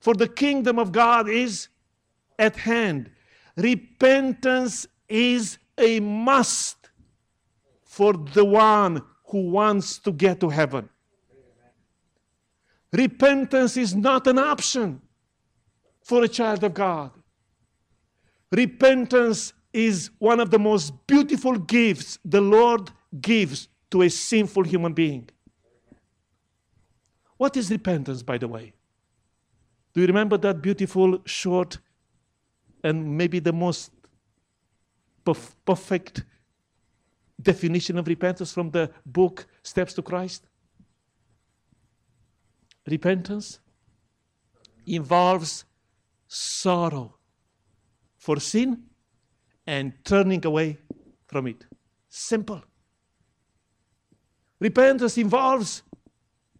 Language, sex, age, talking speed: English, male, 50-69, 90 wpm